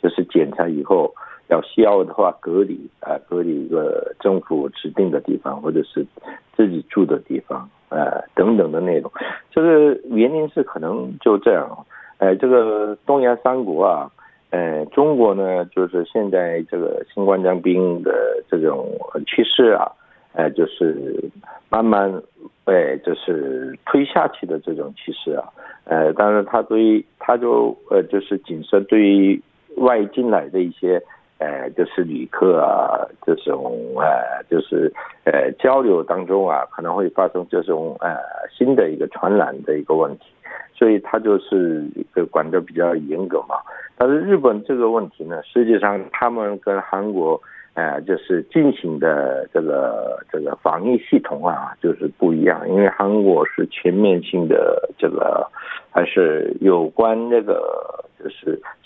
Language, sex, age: Korean, male, 60-79